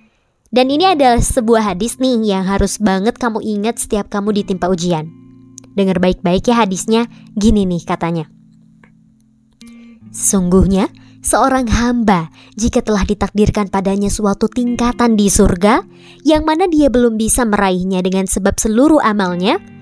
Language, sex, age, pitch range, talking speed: Indonesian, male, 20-39, 185-240 Hz, 130 wpm